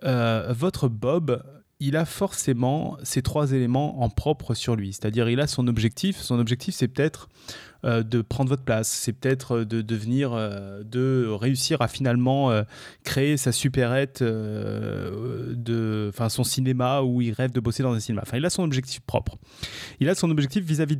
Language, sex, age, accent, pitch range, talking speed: French, male, 30-49, French, 120-145 Hz, 185 wpm